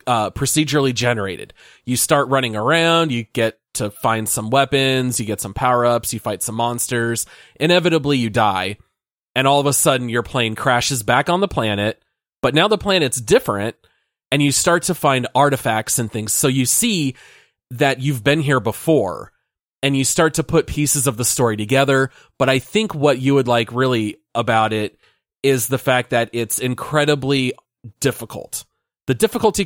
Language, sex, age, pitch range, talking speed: English, male, 30-49, 115-140 Hz, 175 wpm